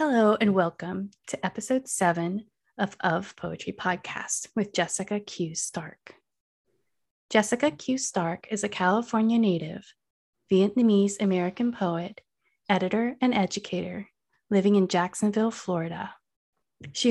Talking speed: 110 wpm